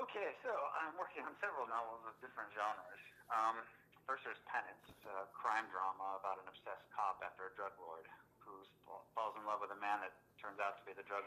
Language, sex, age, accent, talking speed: English, male, 30-49, American, 210 wpm